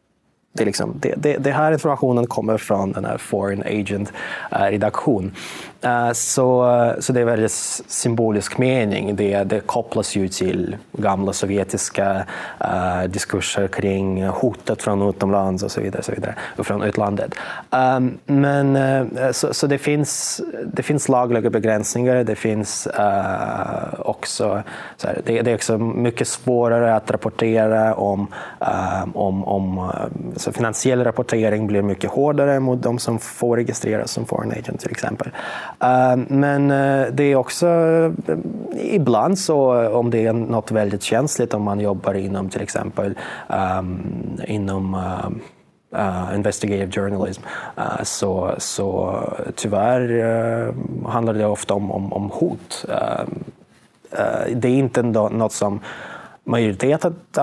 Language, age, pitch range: Swedish, 20-39, 100-125 Hz